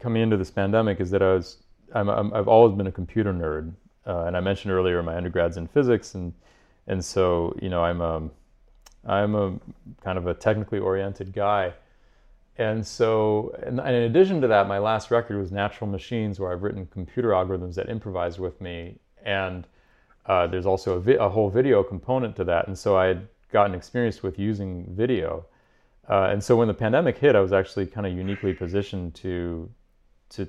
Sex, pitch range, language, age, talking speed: male, 90-110 Hz, English, 30-49, 195 wpm